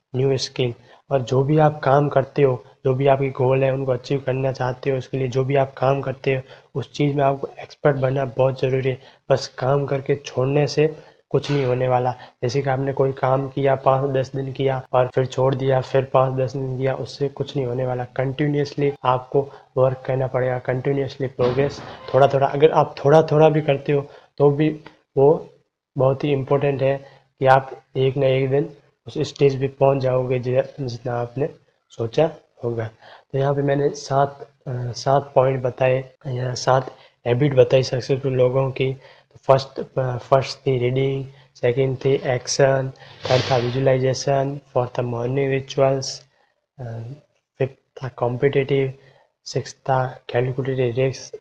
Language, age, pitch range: Hindi, 20-39, 130-140 Hz